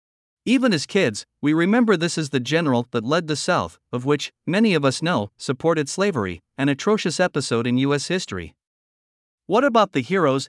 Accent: American